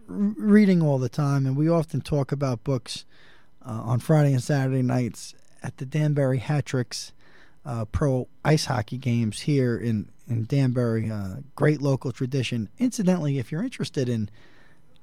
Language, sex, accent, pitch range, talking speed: English, male, American, 115-145 Hz, 150 wpm